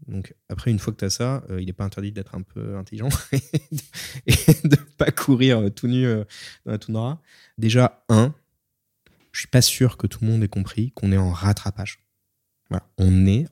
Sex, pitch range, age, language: male, 95-120 Hz, 20-39, French